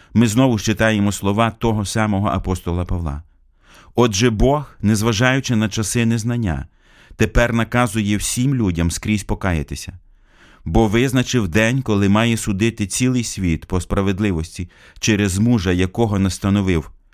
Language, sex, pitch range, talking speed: Ukrainian, male, 90-115 Hz, 120 wpm